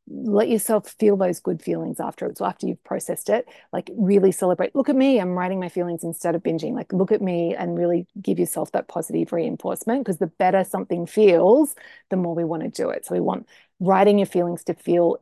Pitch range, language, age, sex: 185-230 Hz, English, 30-49, female